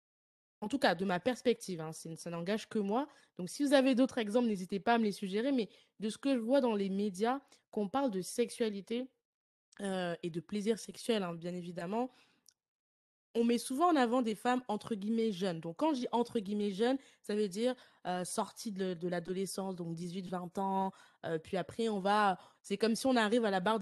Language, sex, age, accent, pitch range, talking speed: French, female, 20-39, French, 180-240 Hz, 215 wpm